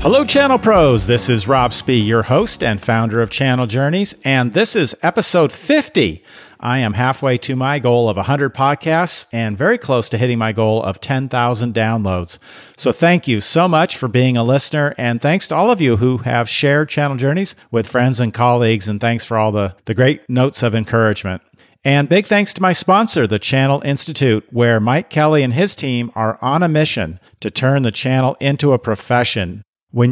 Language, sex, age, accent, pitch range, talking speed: English, male, 50-69, American, 110-140 Hz, 195 wpm